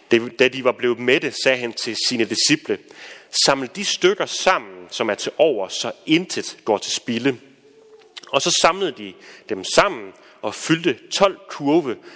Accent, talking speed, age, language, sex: native, 170 wpm, 30-49, Danish, male